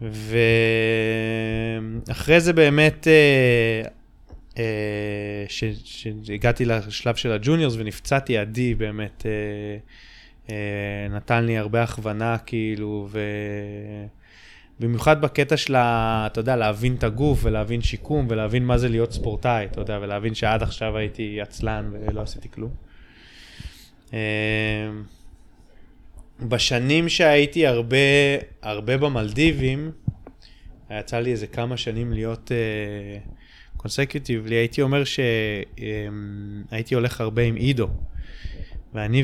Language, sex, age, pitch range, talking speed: Hebrew, male, 20-39, 105-120 Hz, 95 wpm